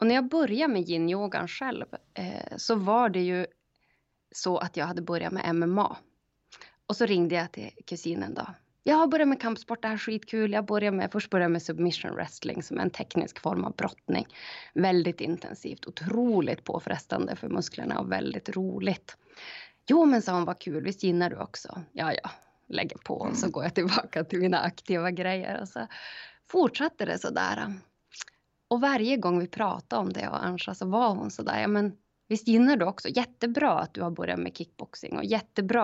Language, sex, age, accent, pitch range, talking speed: Swedish, female, 20-39, native, 175-230 Hz, 195 wpm